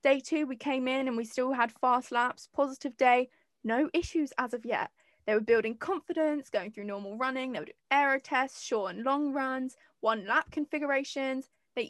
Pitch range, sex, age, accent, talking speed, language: 230-295 Hz, female, 10-29, British, 195 wpm, English